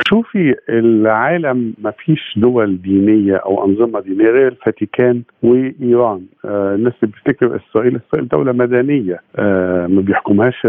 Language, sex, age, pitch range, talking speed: Arabic, male, 50-69, 105-125 Hz, 120 wpm